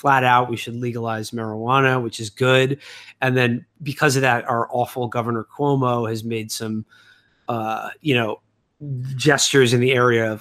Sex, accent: male, American